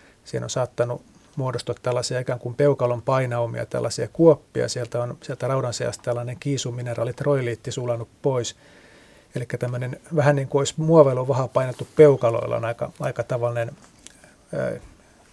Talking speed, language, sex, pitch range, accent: 145 wpm, Finnish, male, 125-150 Hz, native